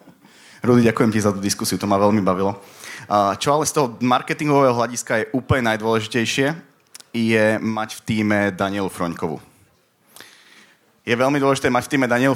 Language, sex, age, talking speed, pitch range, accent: Czech, male, 30-49, 155 wpm, 105-120 Hz, native